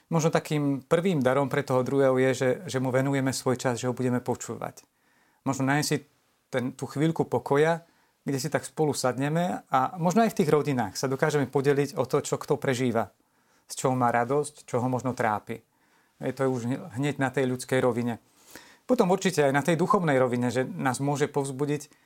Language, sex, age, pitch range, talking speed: Slovak, male, 40-59, 125-145 Hz, 190 wpm